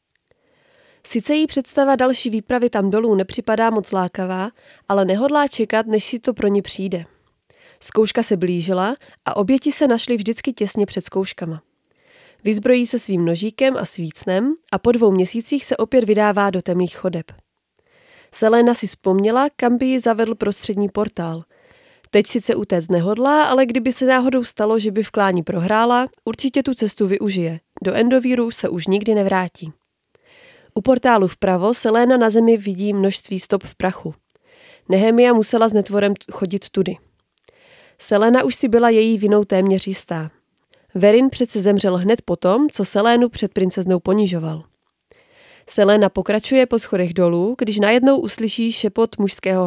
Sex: female